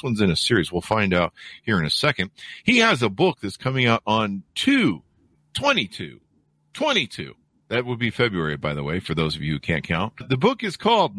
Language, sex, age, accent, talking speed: English, male, 50-69, American, 205 wpm